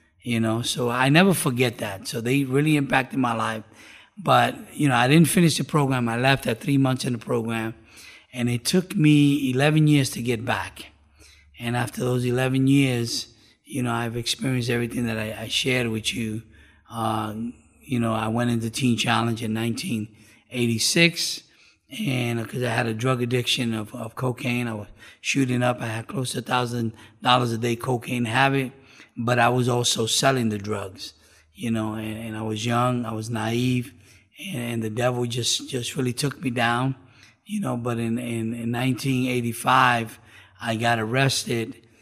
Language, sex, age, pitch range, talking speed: English, male, 30-49, 115-130 Hz, 175 wpm